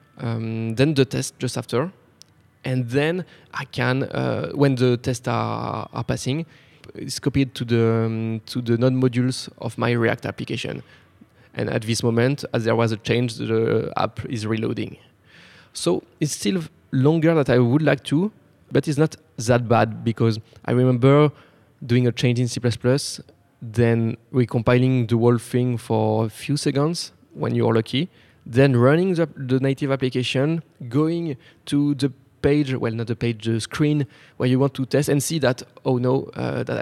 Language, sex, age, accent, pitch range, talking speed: English, male, 20-39, French, 120-145 Hz, 175 wpm